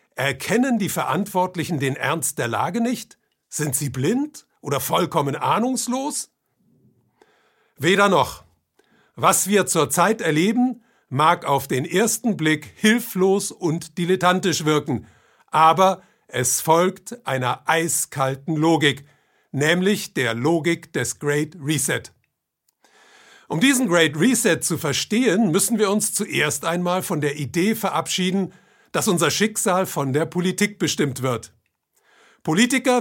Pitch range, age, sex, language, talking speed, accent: 145-205 Hz, 50-69, male, German, 120 wpm, German